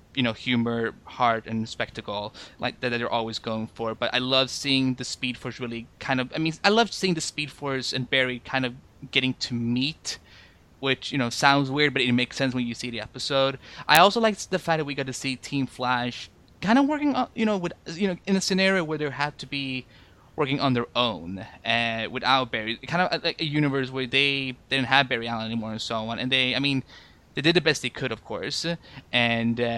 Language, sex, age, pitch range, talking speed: English, male, 20-39, 110-140 Hz, 235 wpm